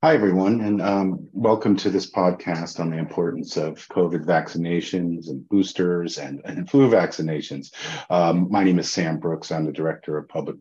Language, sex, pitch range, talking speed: English, male, 80-100 Hz, 175 wpm